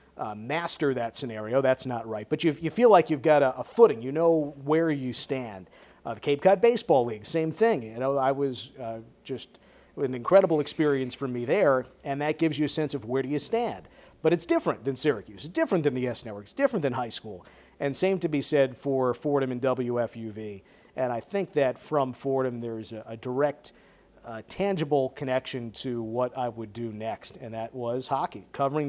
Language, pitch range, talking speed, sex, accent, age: English, 120-145 Hz, 215 wpm, male, American, 40-59